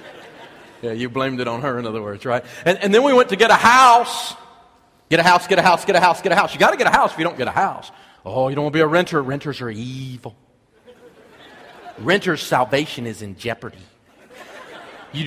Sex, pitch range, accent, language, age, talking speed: male, 150-225 Hz, American, English, 40-59, 230 wpm